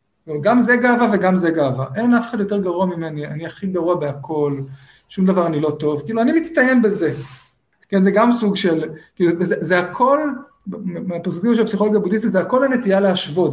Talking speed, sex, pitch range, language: 180 wpm, male, 150-210 Hz, Hebrew